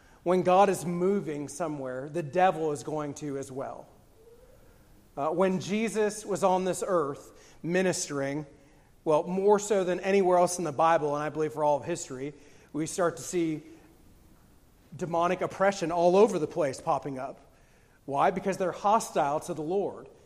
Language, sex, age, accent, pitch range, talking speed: English, male, 40-59, American, 155-190 Hz, 165 wpm